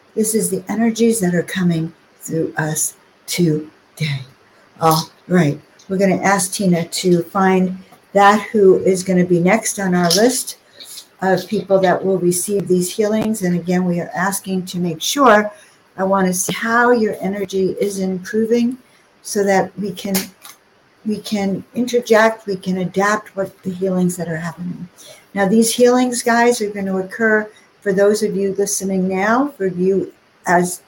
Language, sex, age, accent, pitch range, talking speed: English, female, 60-79, American, 180-210 Hz, 165 wpm